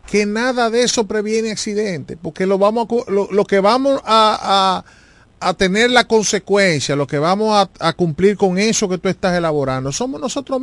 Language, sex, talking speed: Spanish, male, 190 wpm